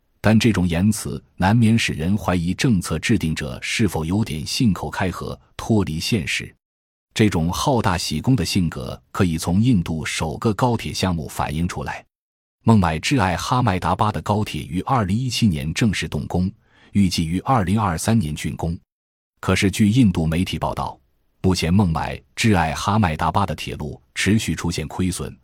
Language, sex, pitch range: Chinese, male, 80-110 Hz